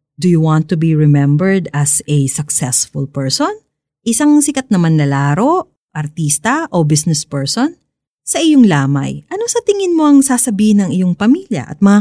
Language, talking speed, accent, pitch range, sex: Filipino, 160 wpm, native, 150-245 Hz, female